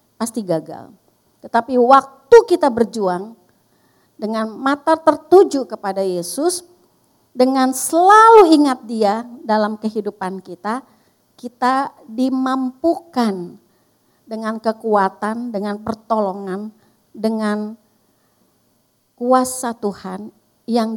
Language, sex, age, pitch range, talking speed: Indonesian, female, 50-69, 210-265 Hz, 80 wpm